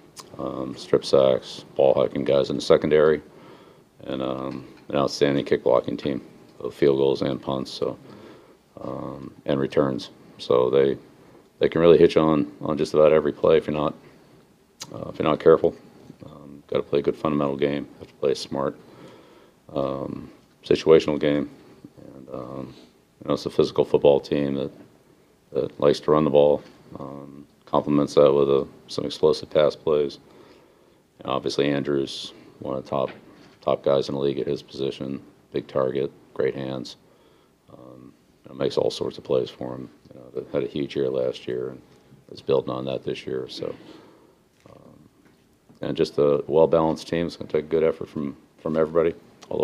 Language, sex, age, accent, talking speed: English, male, 40-59, American, 180 wpm